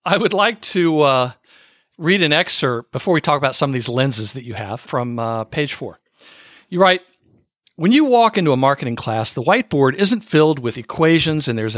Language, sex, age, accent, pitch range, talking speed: English, male, 50-69, American, 125-180 Hz, 205 wpm